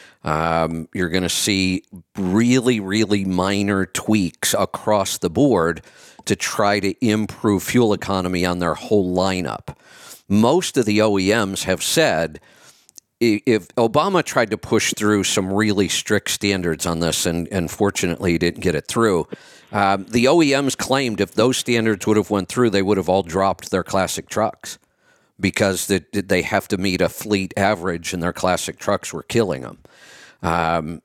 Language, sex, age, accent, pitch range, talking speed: English, male, 50-69, American, 90-115 Hz, 160 wpm